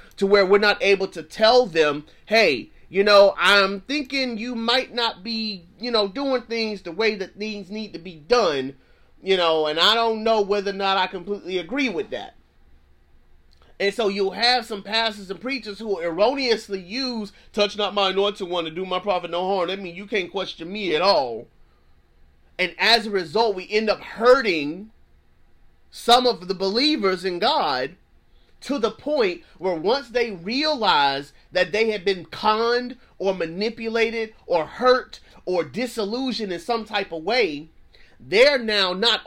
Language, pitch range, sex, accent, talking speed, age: English, 180-230 Hz, male, American, 175 wpm, 30-49